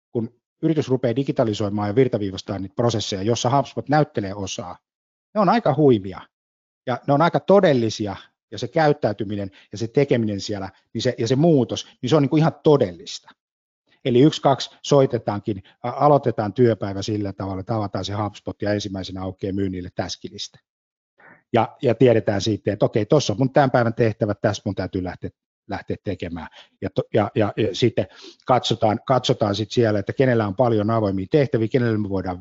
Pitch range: 100-125 Hz